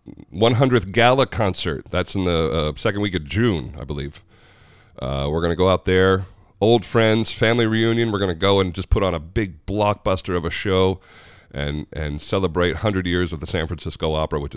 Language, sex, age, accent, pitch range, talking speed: English, male, 40-59, American, 80-110 Hz, 200 wpm